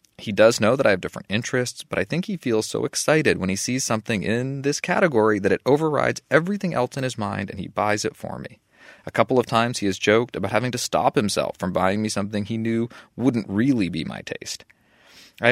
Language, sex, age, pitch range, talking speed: English, male, 30-49, 100-130 Hz, 230 wpm